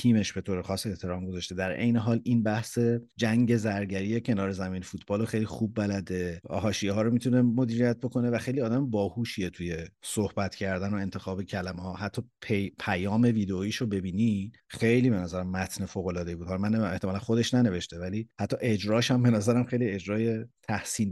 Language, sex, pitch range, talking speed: Persian, male, 95-115 Hz, 180 wpm